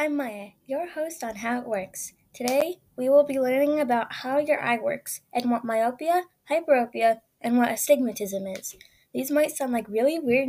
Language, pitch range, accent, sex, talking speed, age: English, 230-290 Hz, American, female, 185 wpm, 10-29